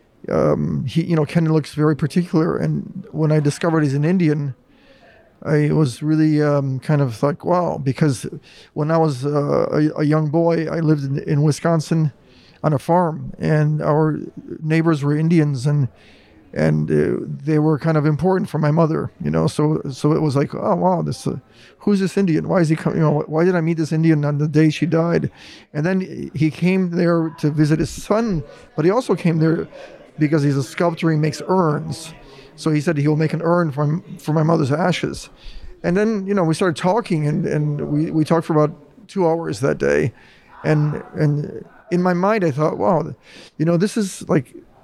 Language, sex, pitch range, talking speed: French, male, 150-175 Hz, 205 wpm